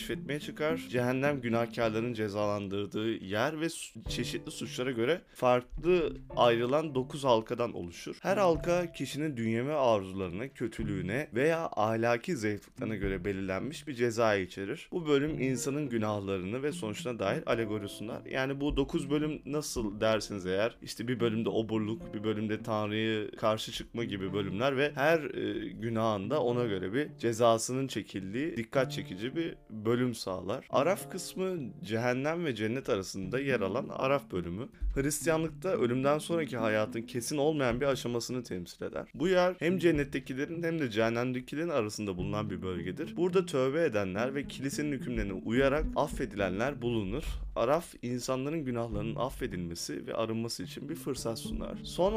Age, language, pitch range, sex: 30-49, Turkish, 110-145 Hz, male